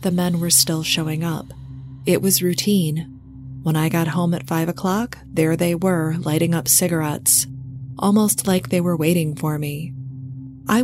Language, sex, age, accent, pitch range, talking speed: English, female, 30-49, American, 145-185 Hz, 165 wpm